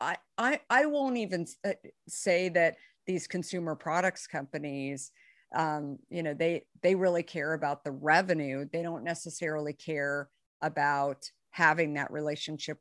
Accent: American